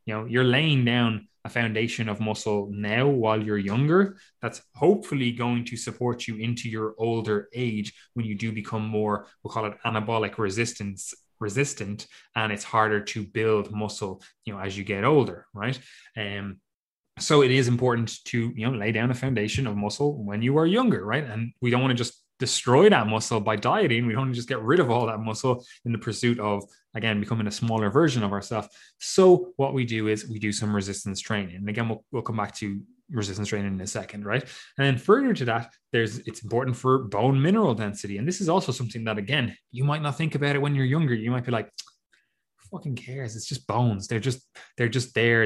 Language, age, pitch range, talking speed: English, 20-39, 105-130 Hz, 215 wpm